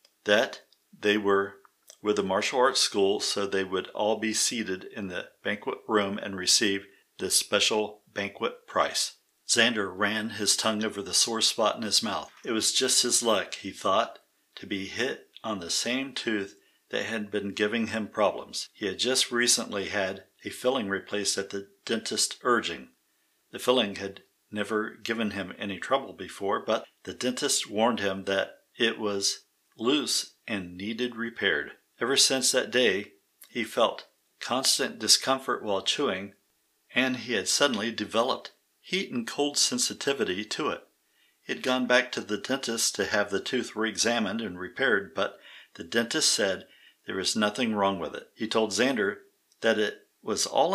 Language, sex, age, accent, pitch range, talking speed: English, male, 50-69, American, 100-120 Hz, 165 wpm